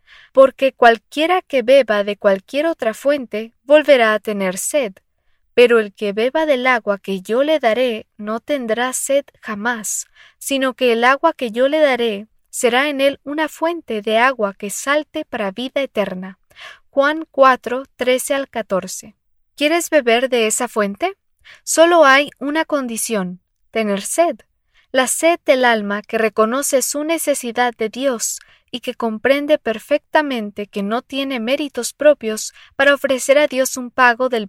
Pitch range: 220-290 Hz